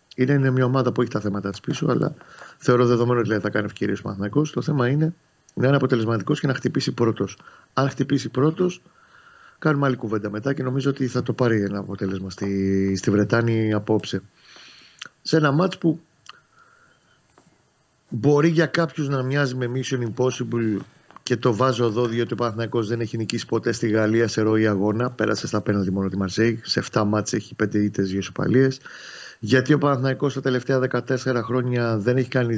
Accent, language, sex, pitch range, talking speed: native, Greek, male, 110-140 Hz, 180 wpm